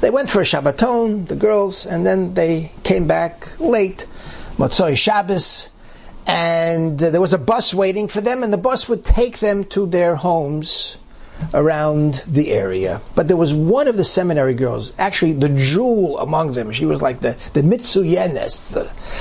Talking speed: 170 wpm